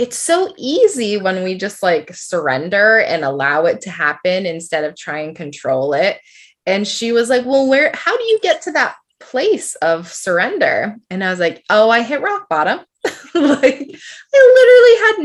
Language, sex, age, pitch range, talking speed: English, female, 20-39, 175-290 Hz, 185 wpm